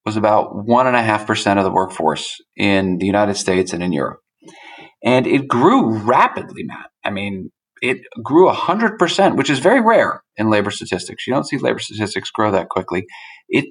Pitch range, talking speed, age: 105-145 Hz, 175 wpm, 40-59